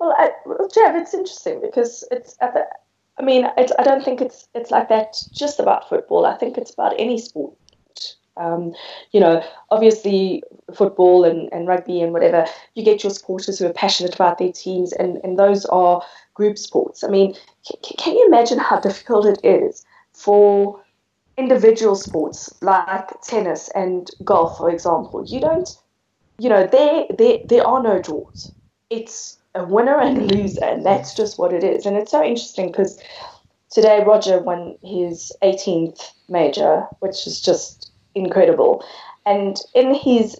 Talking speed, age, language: 165 wpm, 20-39, English